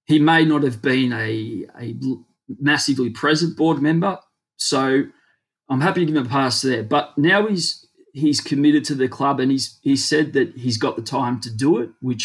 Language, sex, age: English, male, 30-49